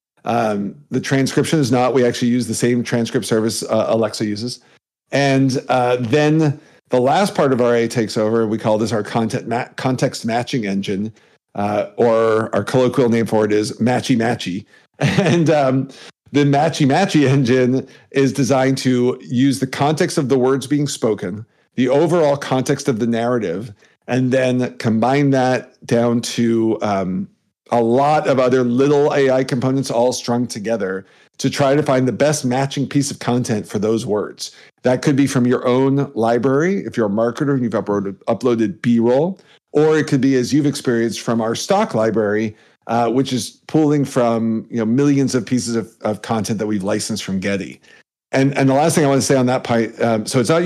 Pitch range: 115-140 Hz